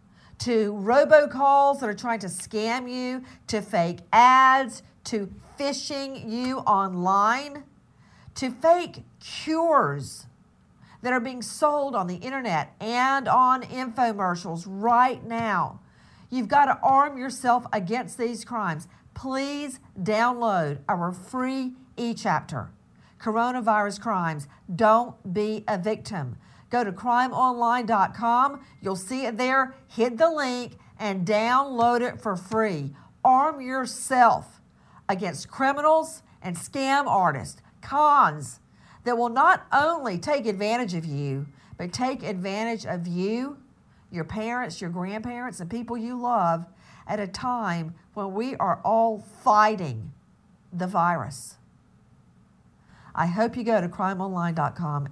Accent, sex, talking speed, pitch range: American, female, 120 wpm, 180-255 Hz